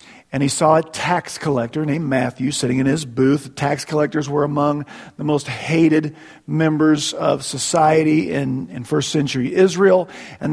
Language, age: English, 40-59